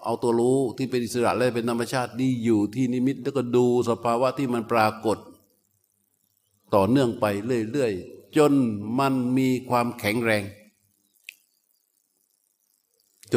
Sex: male